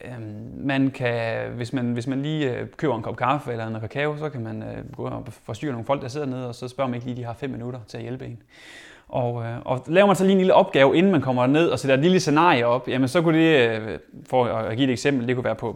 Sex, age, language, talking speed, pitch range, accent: male, 30-49, Danish, 270 wpm, 120-145 Hz, native